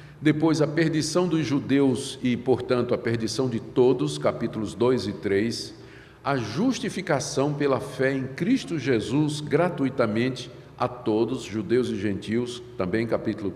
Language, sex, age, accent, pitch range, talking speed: Portuguese, male, 50-69, Brazilian, 120-150 Hz, 135 wpm